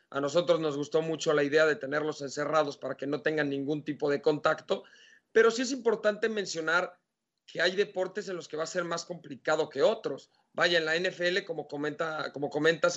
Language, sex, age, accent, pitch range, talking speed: Spanish, male, 40-59, Mexican, 155-185 Hz, 205 wpm